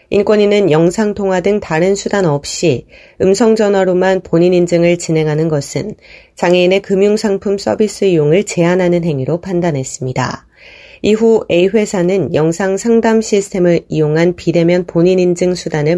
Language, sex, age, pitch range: Korean, female, 30-49, 165-200 Hz